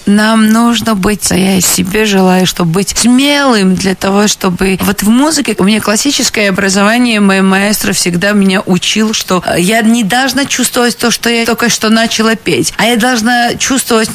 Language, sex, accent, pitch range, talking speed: Russian, female, native, 190-225 Hz, 175 wpm